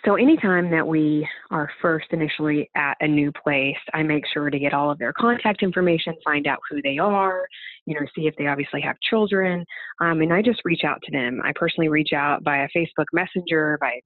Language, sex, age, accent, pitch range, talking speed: English, female, 30-49, American, 145-170 Hz, 220 wpm